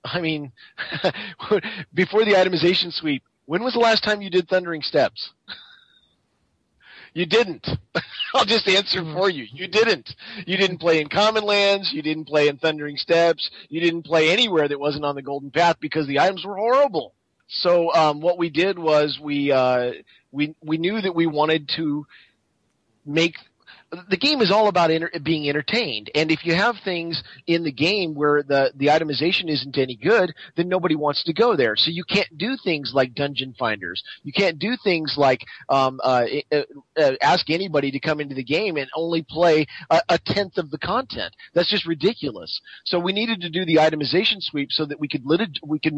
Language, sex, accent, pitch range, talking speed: English, male, American, 145-185 Hz, 195 wpm